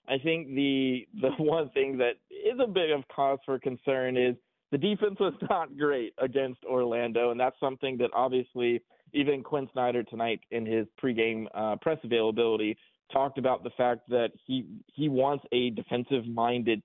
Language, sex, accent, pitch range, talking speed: English, male, American, 120-140 Hz, 165 wpm